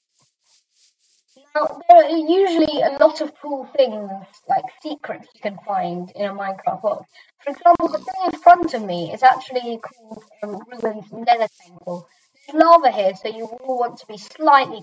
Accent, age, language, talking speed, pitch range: British, 20-39, English, 180 wpm, 205-290 Hz